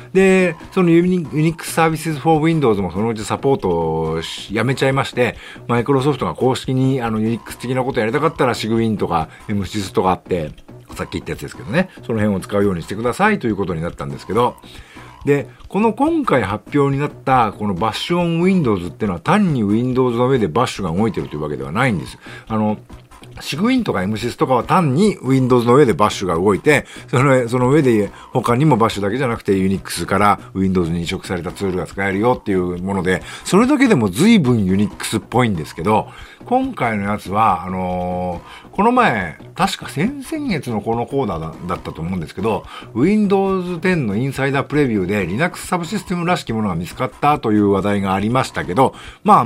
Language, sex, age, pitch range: Japanese, male, 50-69, 100-160 Hz